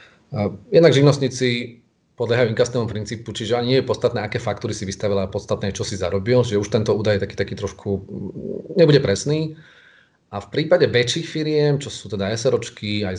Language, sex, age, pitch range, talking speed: Slovak, male, 30-49, 100-120 Hz, 180 wpm